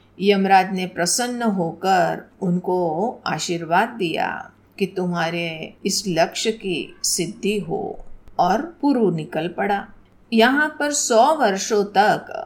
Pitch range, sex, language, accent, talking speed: 185-230 Hz, female, Hindi, native, 110 wpm